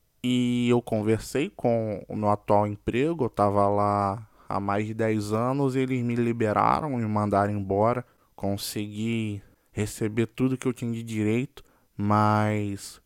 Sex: male